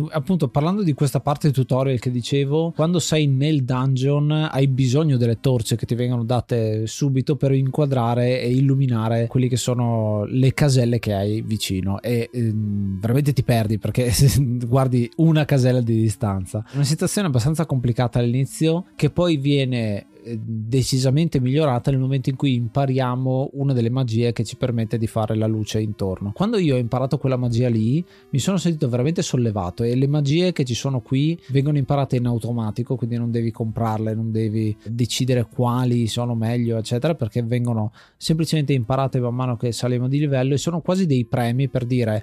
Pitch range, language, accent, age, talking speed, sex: 115-140 Hz, Italian, native, 20-39, 175 wpm, male